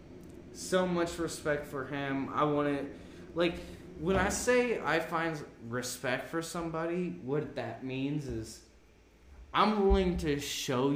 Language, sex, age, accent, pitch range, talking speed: English, male, 20-39, American, 115-155 Hz, 135 wpm